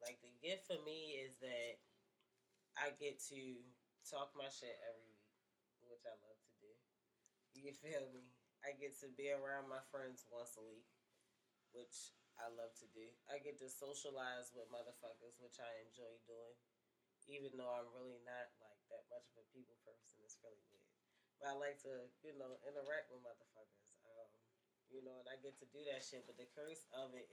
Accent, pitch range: American, 120-145 Hz